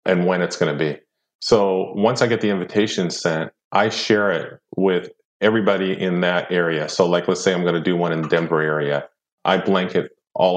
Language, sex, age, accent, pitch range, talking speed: English, male, 40-59, American, 90-110 Hz, 210 wpm